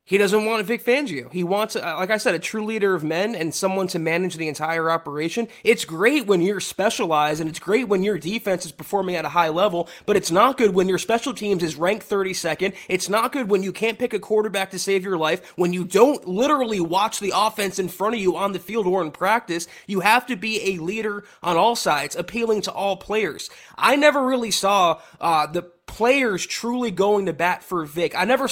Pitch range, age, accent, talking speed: 175-220 Hz, 20-39, American, 225 wpm